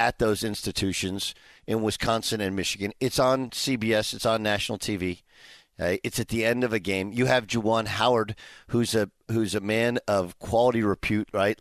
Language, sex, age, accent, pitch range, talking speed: English, male, 50-69, American, 120-160 Hz, 180 wpm